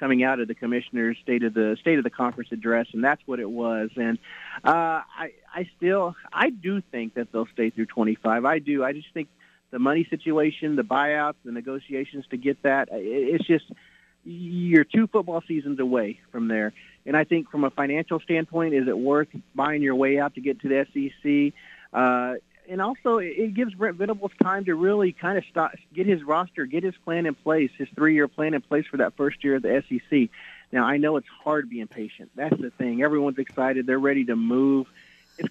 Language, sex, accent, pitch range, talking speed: English, male, American, 125-170 Hz, 210 wpm